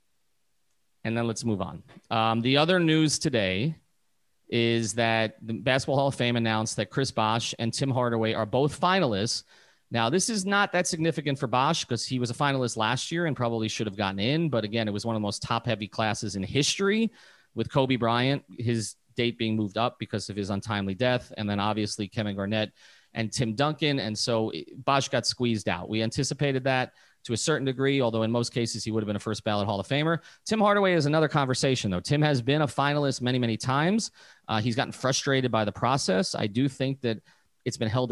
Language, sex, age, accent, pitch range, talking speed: English, male, 30-49, American, 110-140 Hz, 215 wpm